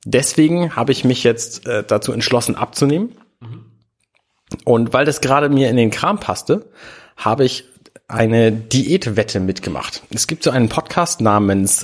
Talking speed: 140 wpm